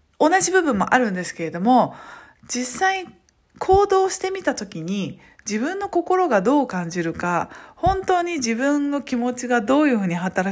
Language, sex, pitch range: Japanese, female, 180-270 Hz